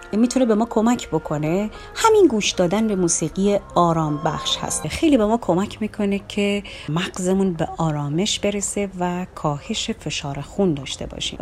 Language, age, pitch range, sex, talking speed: Persian, 30-49, 160-215 Hz, female, 160 wpm